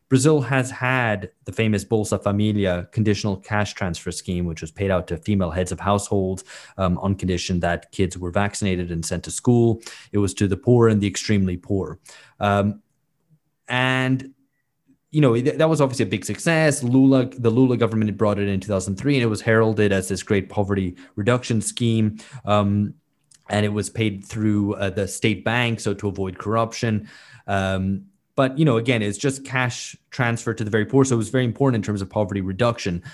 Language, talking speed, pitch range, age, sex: English, 195 wpm, 95-120 Hz, 20-39, male